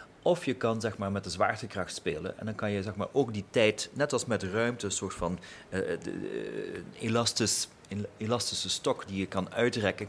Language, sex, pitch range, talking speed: Dutch, male, 90-110 Hz, 215 wpm